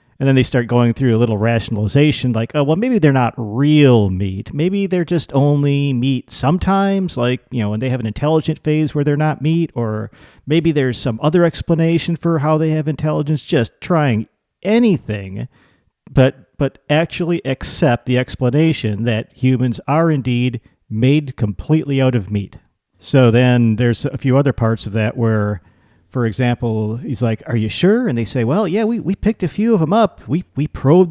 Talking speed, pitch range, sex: 190 wpm, 115-155 Hz, male